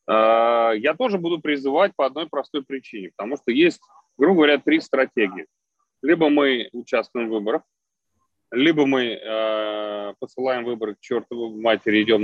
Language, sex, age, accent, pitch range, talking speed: Russian, male, 30-49, native, 115-165 Hz, 140 wpm